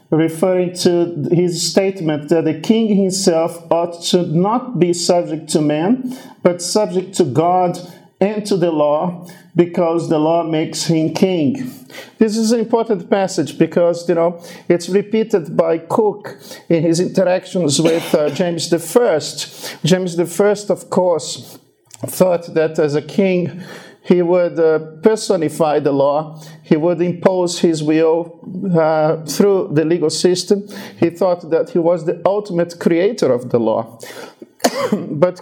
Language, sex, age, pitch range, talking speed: English, male, 50-69, 160-190 Hz, 145 wpm